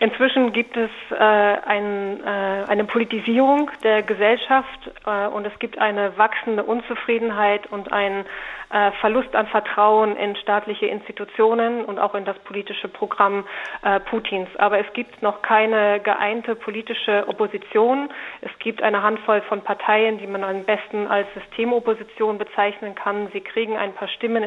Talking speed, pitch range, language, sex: 145 wpm, 205-220 Hz, German, female